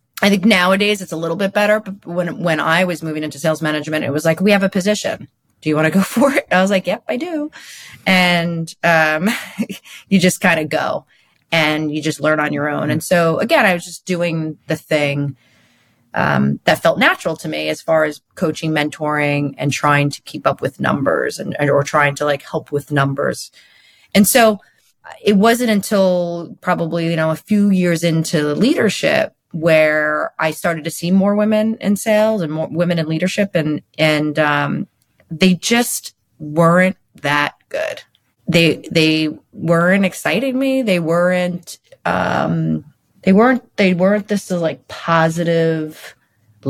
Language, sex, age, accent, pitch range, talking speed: English, female, 30-49, American, 155-195 Hz, 180 wpm